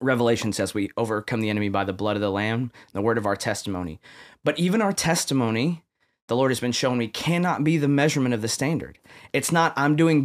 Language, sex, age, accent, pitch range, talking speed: English, male, 20-39, American, 115-150 Hz, 225 wpm